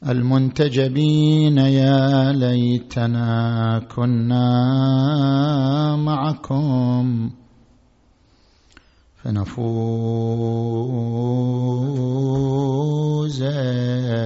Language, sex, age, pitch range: Arabic, male, 50-69, 115-135 Hz